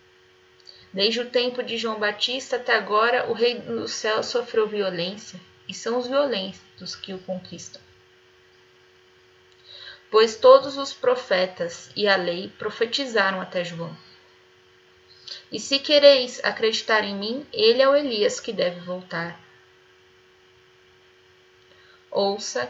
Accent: Brazilian